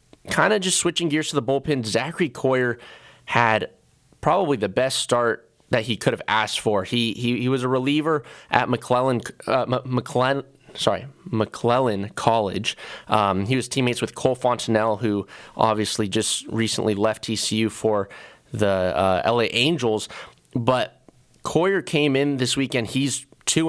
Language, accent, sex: English, American, male